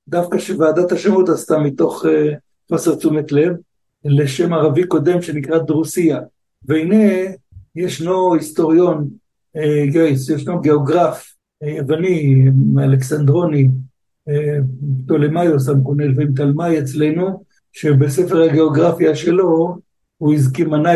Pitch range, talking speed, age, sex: 150-175 Hz, 95 wpm, 60-79, male